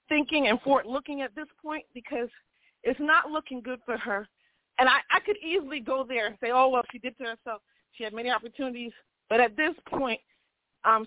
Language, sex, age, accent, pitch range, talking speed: English, female, 40-59, American, 215-275 Hz, 200 wpm